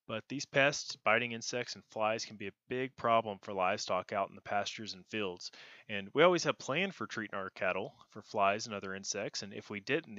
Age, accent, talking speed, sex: 30-49, American, 225 wpm, male